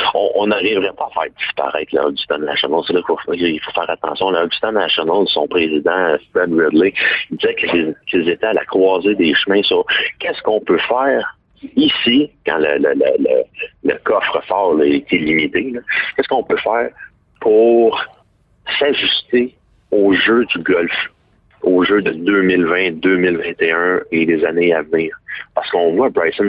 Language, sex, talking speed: French, male, 165 wpm